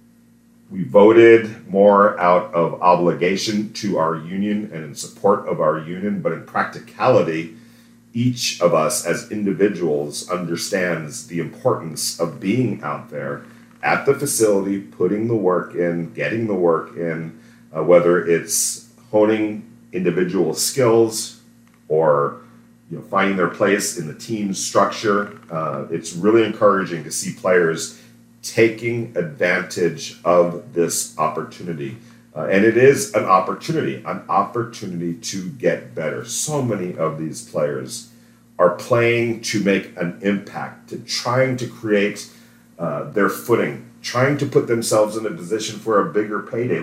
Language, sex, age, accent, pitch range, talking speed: English, male, 40-59, American, 95-120 Hz, 135 wpm